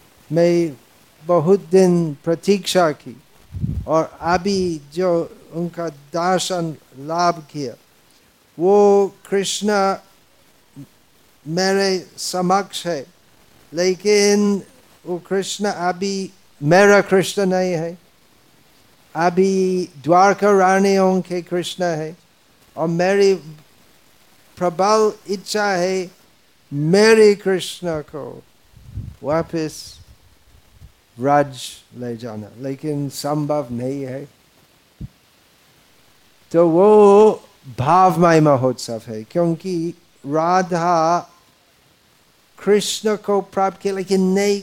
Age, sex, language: 50-69, male, Hindi